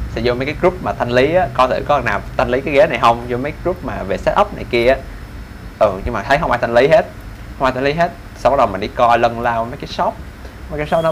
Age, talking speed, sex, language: 20-39, 315 wpm, male, Vietnamese